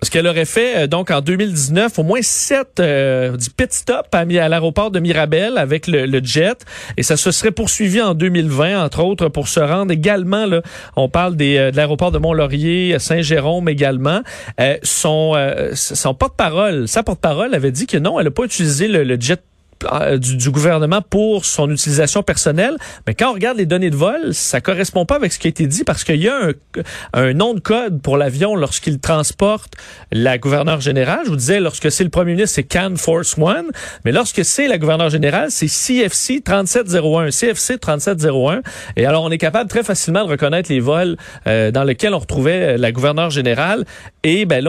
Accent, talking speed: Canadian, 200 wpm